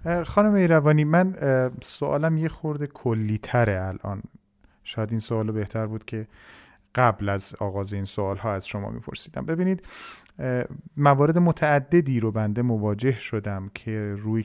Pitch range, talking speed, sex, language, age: 105-130 Hz, 135 wpm, male, Persian, 40-59